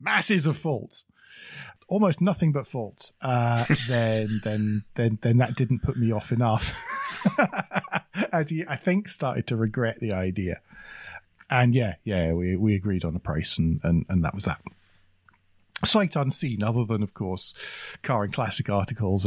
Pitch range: 95-125 Hz